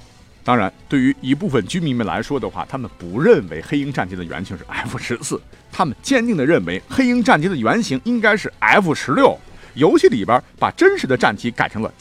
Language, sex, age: Chinese, male, 50-69